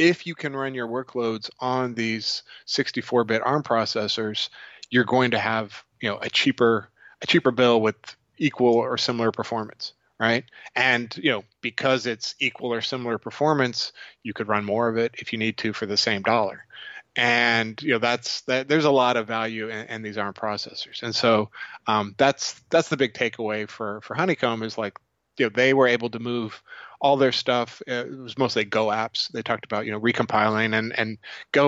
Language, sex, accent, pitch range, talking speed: English, male, American, 110-125 Hz, 195 wpm